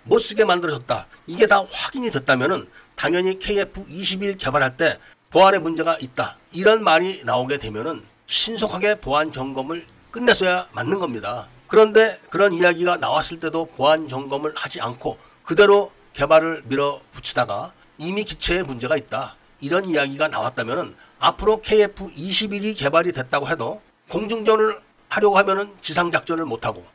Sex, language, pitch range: male, Korean, 155-205 Hz